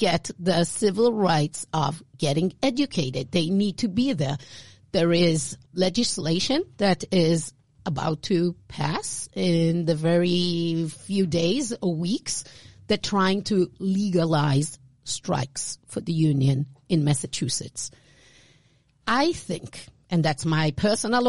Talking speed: 120 wpm